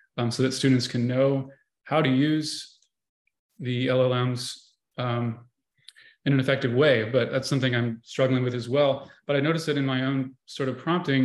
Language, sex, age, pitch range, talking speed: English, male, 20-39, 130-150 Hz, 180 wpm